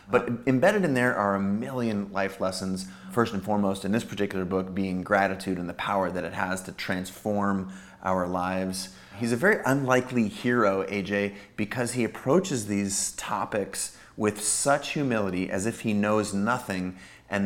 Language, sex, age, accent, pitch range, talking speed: English, male, 30-49, American, 95-110 Hz, 165 wpm